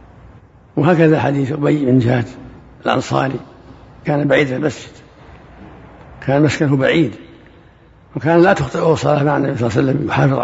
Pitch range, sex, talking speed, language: 130-160 Hz, male, 140 wpm, Arabic